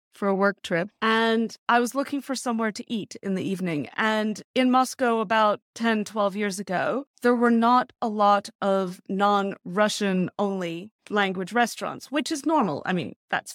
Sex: female